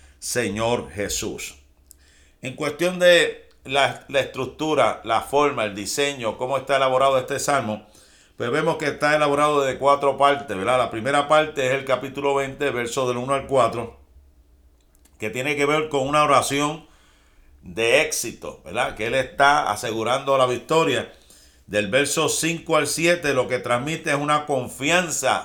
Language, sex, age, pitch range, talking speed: Spanish, male, 50-69, 105-150 Hz, 155 wpm